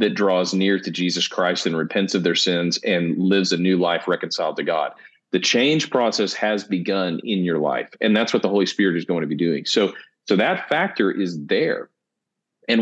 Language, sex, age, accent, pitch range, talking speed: English, male, 40-59, American, 90-110 Hz, 210 wpm